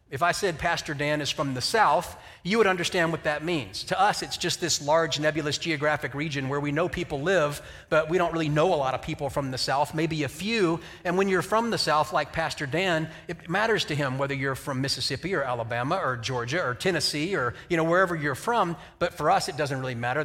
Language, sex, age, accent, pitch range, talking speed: English, male, 40-59, American, 135-170 Hz, 235 wpm